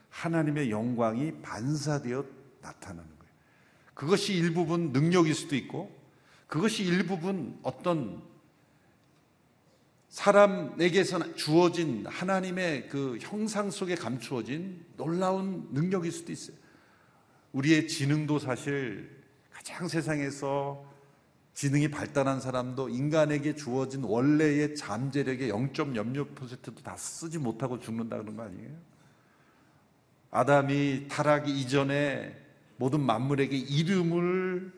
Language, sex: Korean, male